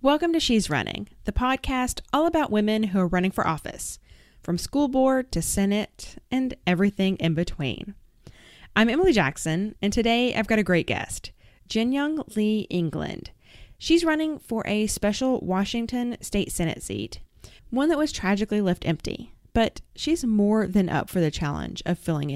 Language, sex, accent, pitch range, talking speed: English, female, American, 165-225 Hz, 165 wpm